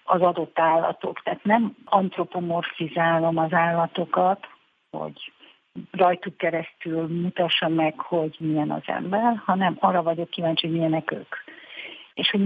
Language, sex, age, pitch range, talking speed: Hungarian, female, 50-69, 165-190 Hz, 125 wpm